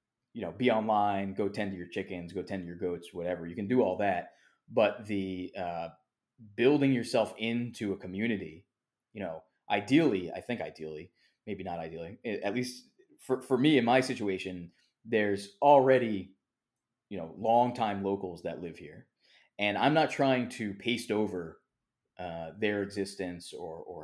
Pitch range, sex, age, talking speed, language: 90-110 Hz, male, 20-39, 165 wpm, English